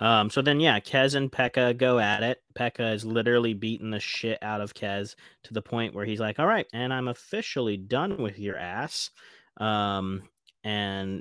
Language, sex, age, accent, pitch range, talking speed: English, male, 20-39, American, 100-125 Hz, 195 wpm